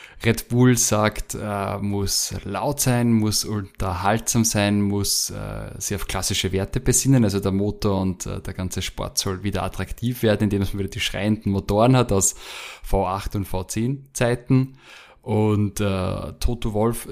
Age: 20-39